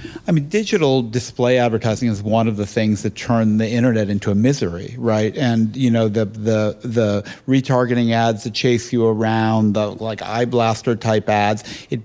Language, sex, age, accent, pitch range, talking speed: English, male, 50-69, American, 110-130 Hz, 185 wpm